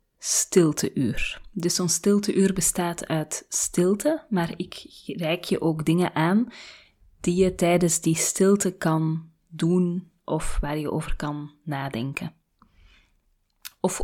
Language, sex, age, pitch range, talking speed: Dutch, female, 20-39, 160-200 Hz, 120 wpm